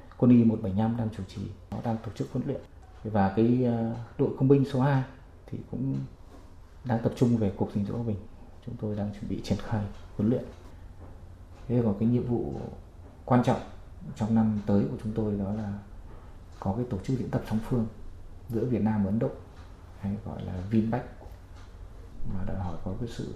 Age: 20-39